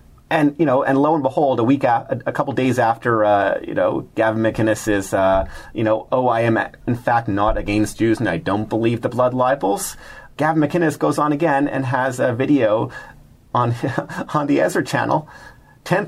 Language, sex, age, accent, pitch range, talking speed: English, male, 30-49, American, 100-140 Hz, 195 wpm